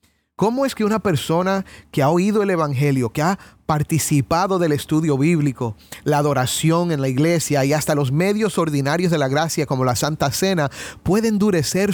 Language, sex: Spanish, male